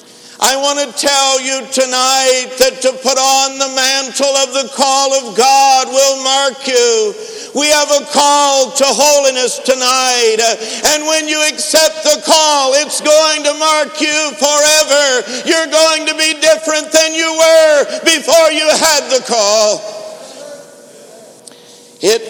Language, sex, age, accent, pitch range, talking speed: English, male, 60-79, American, 245-300 Hz, 145 wpm